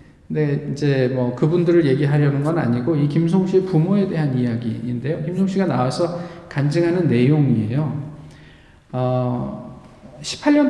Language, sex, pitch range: Korean, male, 125-175 Hz